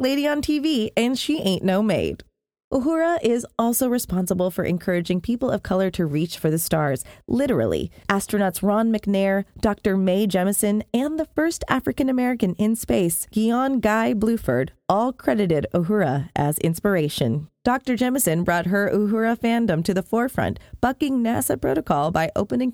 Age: 30-49